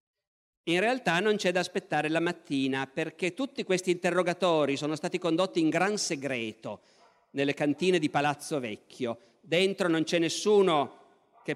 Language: Italian